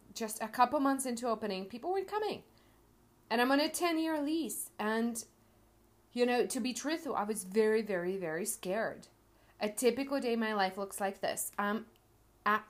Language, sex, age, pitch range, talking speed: English, female, 30-49, 210-290 Hz, 180 wpm